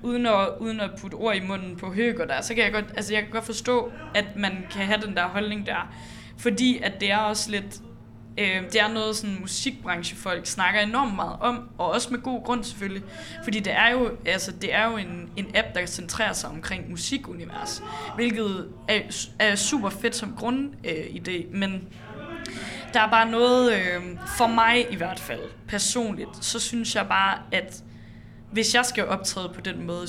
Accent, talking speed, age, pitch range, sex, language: native, 200 wpm, 20-39, 175-230 Hz, female, Danish